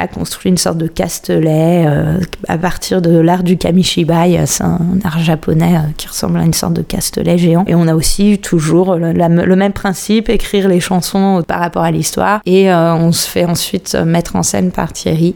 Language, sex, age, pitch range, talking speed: French, female, 20-39, 175-200 Hz, 205 wpm